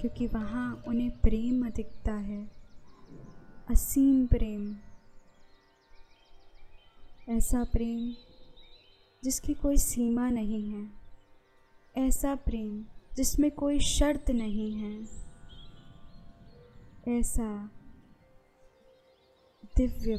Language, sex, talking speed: Hindi, female, 70 wpm